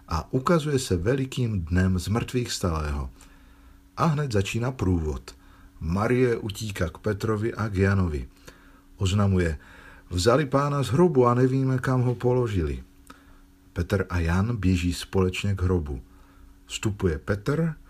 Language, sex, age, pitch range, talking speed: Slovak, male, 50-69, 90-105 Hz, 125 wpm